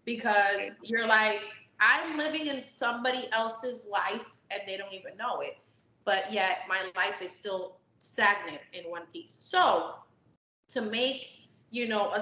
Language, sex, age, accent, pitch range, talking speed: English, female, 20-39, American, 200-255 Hz, 150 wpm